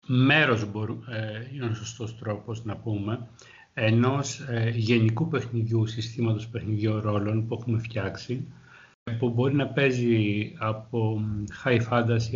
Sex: male